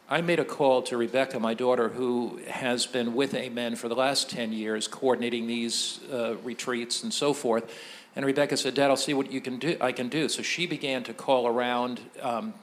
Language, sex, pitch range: English, male, 120-150 Hz